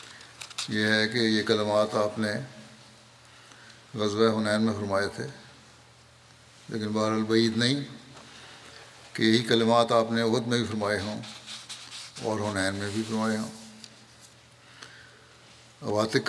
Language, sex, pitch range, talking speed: Urdu, male, 110-115 Hz, 120 wpm